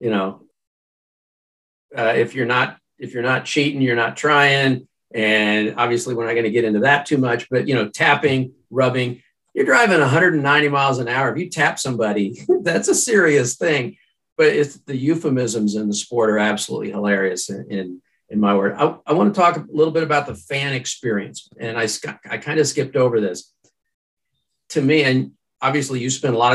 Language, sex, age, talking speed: English, male, 50-69, 195 wpm